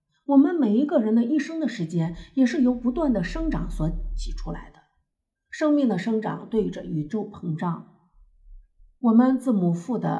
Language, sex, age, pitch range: Chinese, female, 50-69, 175-255 Hz